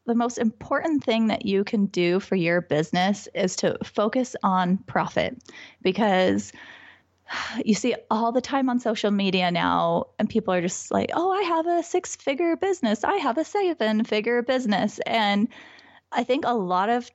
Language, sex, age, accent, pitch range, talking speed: English, female, 20-39, American, 185-240 Hz, 175 wpm